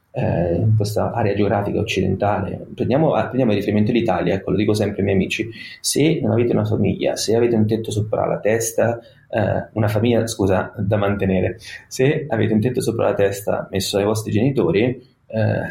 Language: Italian